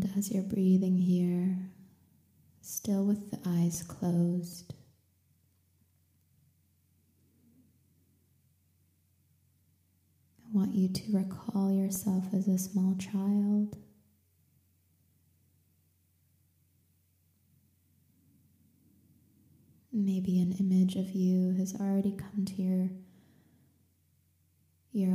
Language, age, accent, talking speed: English, 20-39, American, 70 wpm